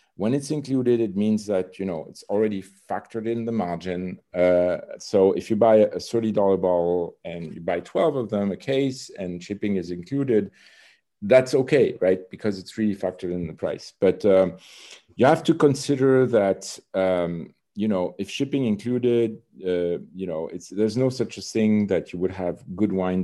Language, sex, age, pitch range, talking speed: English, male, 40-59, 90-115 Hz, 185 wpm